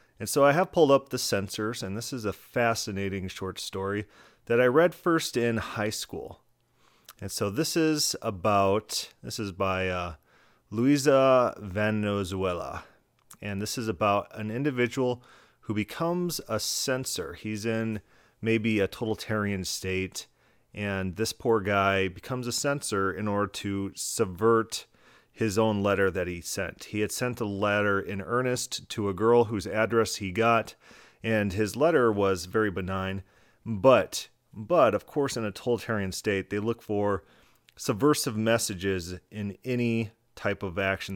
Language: English